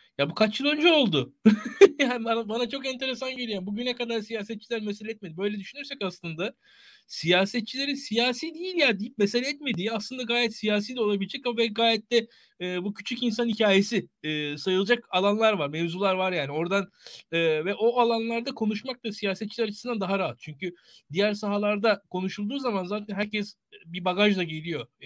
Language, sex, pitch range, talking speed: Turkish, male, 180-230 Hz, 170 wpm